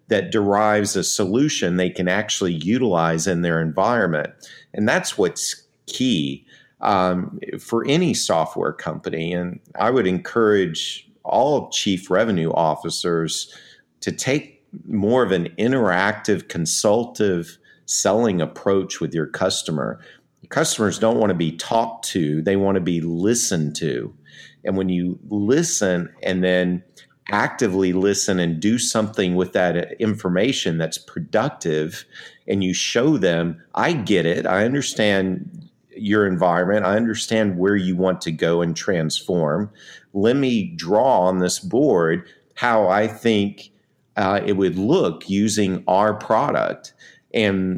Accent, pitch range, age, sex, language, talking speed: American, 90-105 Hz, 50-69, male, English, 135 wpm